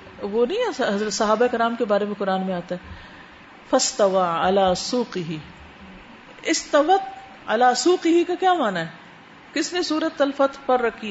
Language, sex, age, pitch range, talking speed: Urdu, female, 50-69, 230-330 Hz, 140 wpm